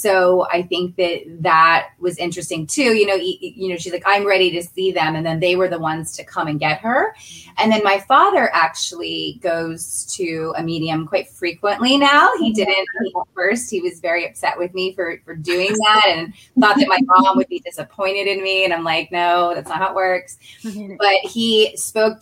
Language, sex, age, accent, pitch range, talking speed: English, female, 20-39, American, 165-205 Hz, 215 wpm